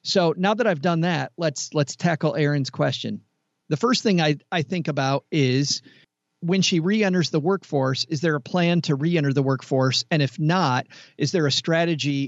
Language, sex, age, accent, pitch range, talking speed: English, male, 40-59, American, 135-165 Hz, 190 wpm